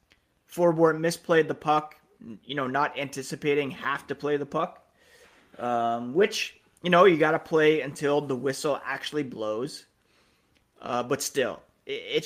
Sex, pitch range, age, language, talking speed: male, 130-165 Hz, 30-49, English, 150 wpm